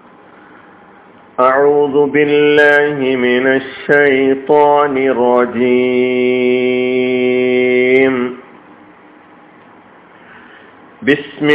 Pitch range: 130-150 Hz